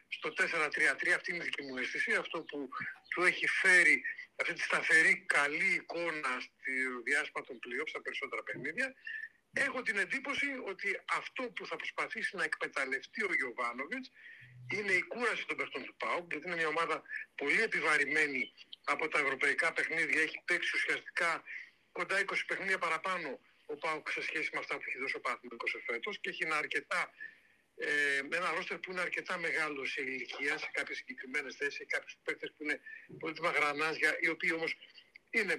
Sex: male